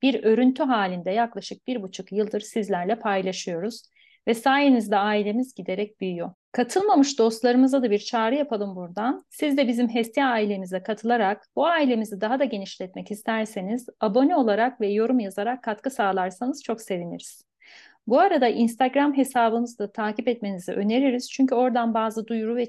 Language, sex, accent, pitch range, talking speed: Turkish, female, native, 205-260 Hz, 145 wpm